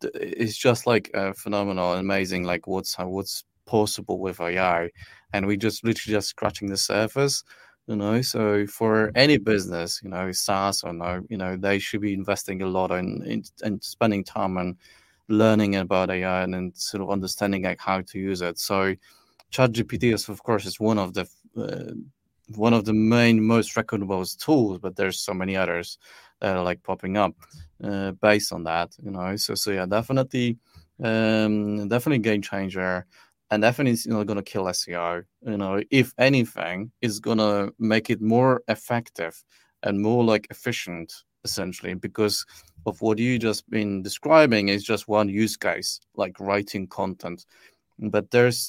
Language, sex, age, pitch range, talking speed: English, male, 30-49, 95-110 Hz, 170 wpm